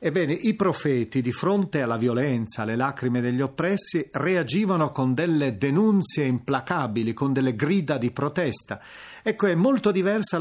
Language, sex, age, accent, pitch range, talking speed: Italian, male, 40-59, native, 120-165 Hz, 145 wpm